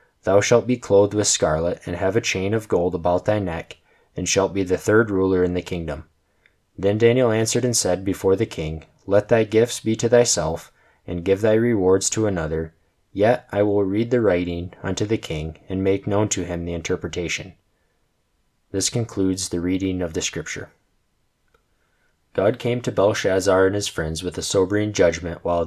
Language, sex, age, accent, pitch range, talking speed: English, male, 20-39, American, 90-110 Hz, 185 wpm